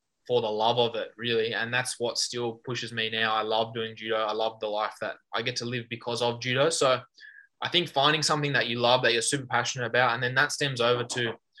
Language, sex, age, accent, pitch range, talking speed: English, male, 20-39, Australian, 115-135 Hz, 250 wpm